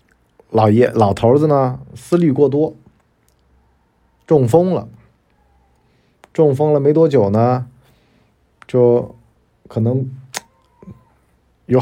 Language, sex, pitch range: Chinese, male, 100-140 Hz